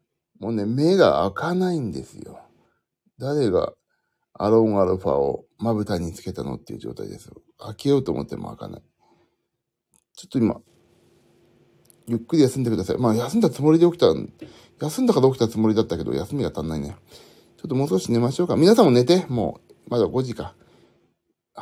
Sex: male